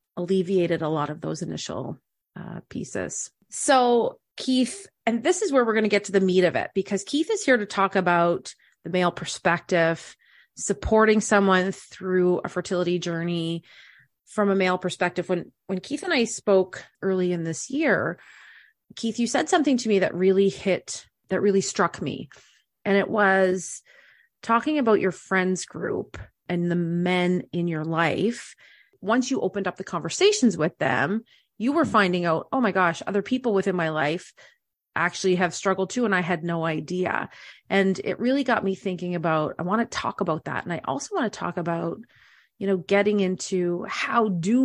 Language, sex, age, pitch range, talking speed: English, female, 30-49, 175-220 Hz, 180 wpm